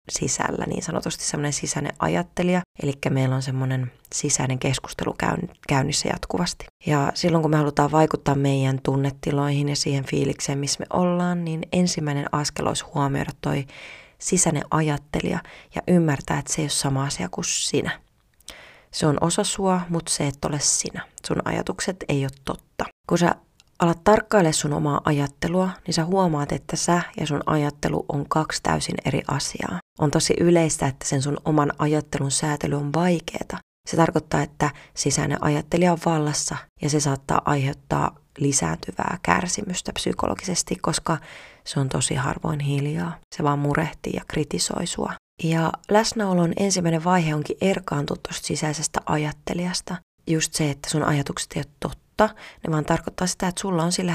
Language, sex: Finnish, female